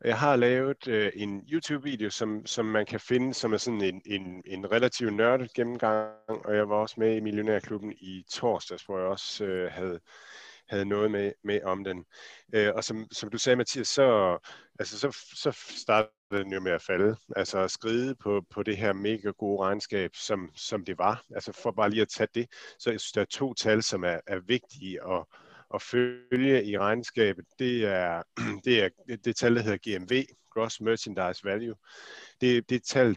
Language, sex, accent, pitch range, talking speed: Danish, male, native, 100-120 Hz, 205 wpm